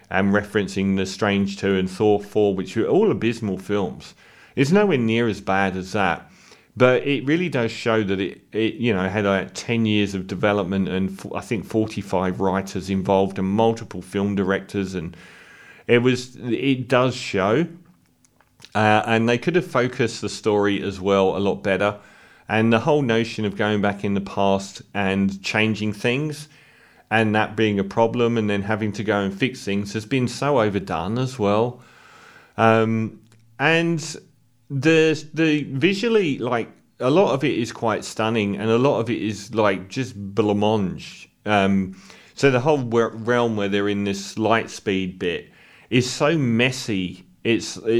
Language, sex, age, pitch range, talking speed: English, male, 40-59, 100-120 Hz, 170 wpm